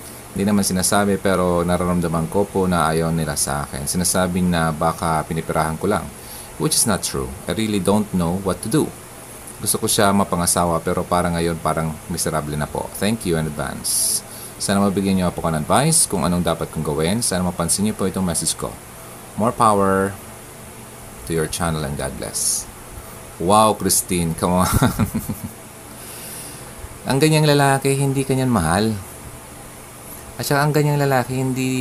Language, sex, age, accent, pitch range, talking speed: Filipino, male, 30-49, native, 85-120 Hz, 165 wpm